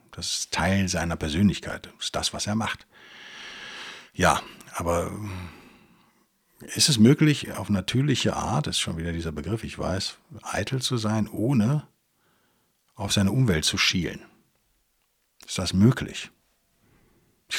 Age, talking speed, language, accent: 60-79, 135 wpm, German, German